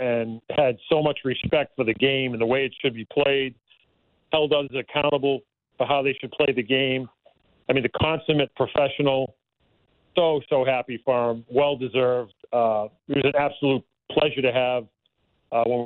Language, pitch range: English, 120-140 Hz